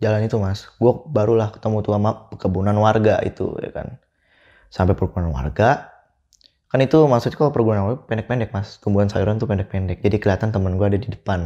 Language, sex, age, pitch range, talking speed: Indonesian, male, 20-39, 95-115 Hz, 185 wpm